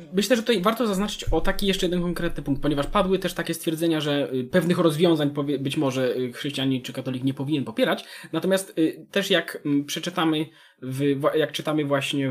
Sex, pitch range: male, 130-185 Hz